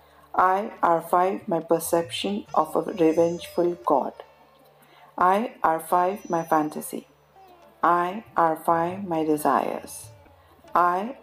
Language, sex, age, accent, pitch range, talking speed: English, female, 50-69, Indian, 165-195 Hz, 90 wpm